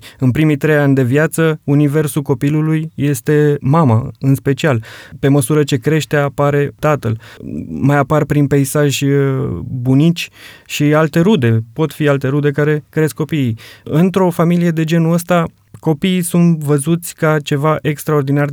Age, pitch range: 20-39, 130-155 Hz